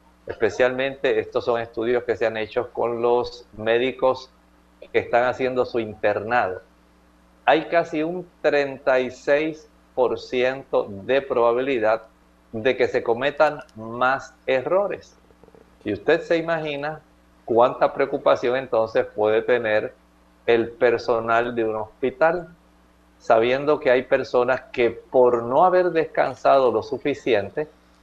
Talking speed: 115 wpm